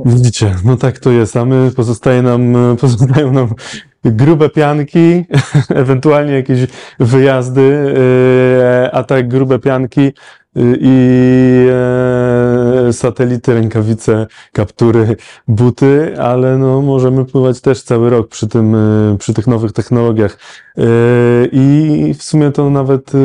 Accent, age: native, 20-39